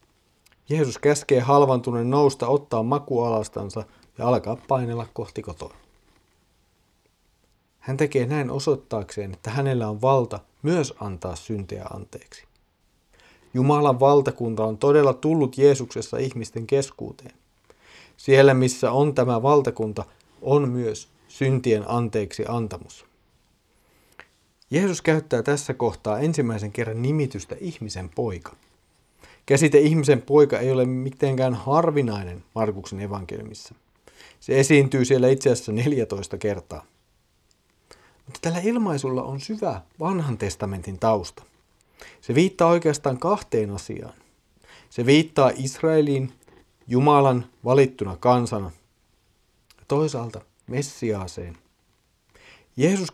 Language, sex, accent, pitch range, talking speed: Finnish, male, native, 110-145 Hz, 100 wpm